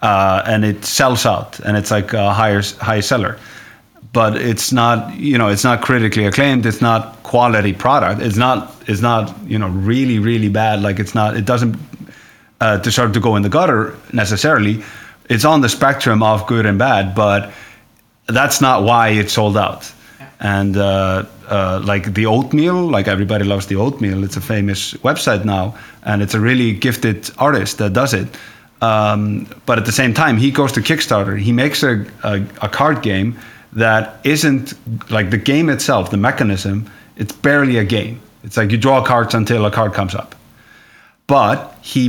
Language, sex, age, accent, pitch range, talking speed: English, male, 30-49, Finnish, 105-120 Hz, 180 wpm